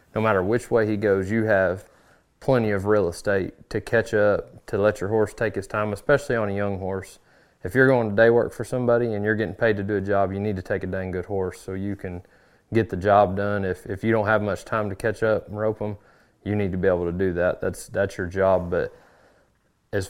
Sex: male